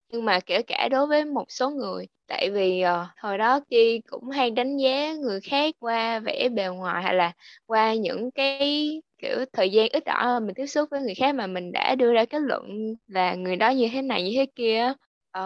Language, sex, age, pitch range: Vietnamese, female, 10-29, 200-270 Hz